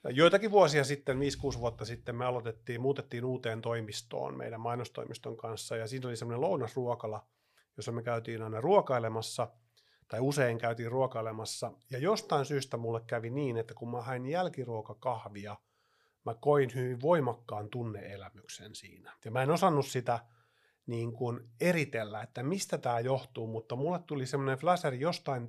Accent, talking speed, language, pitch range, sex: native, 150 wpm, Finnish, 115-145 Hz, male